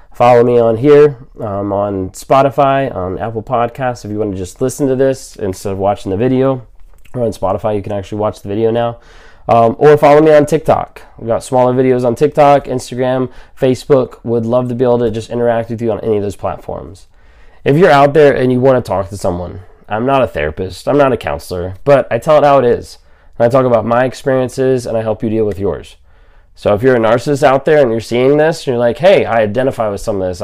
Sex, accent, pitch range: male, American, 105-130 Hz